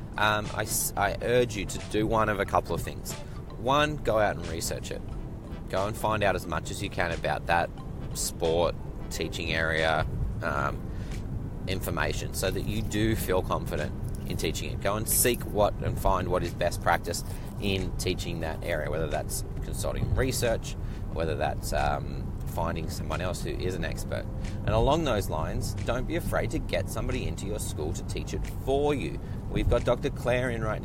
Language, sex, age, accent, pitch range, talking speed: English, male, 30-49, Australian, 90-115 Hz, 185 wpm